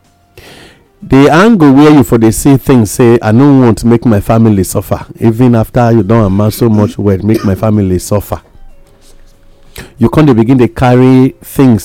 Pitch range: 95-125 Hz